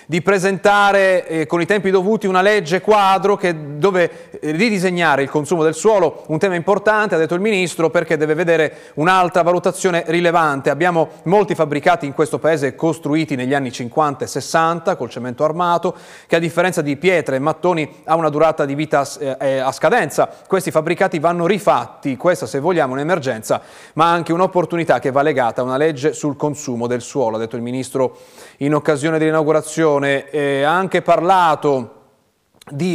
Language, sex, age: Italian, male, 30-49